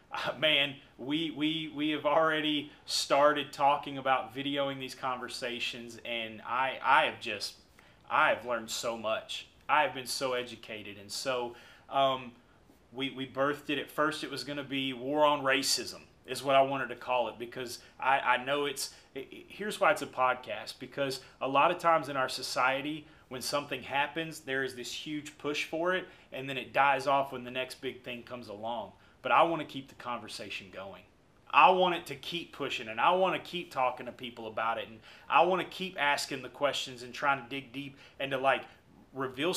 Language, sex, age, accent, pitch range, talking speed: English, male, 30-49, American, 130-155 Hz, 205 wpm